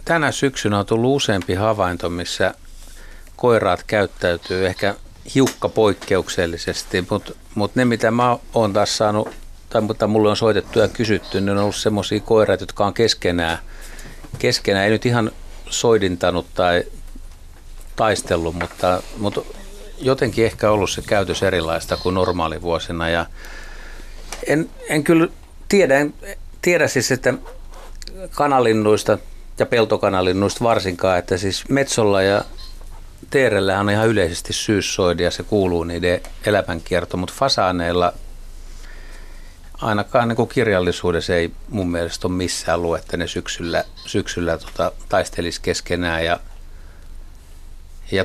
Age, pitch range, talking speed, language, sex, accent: 60-79, 80-110 Hz, 120 wpm, Finnish, male, native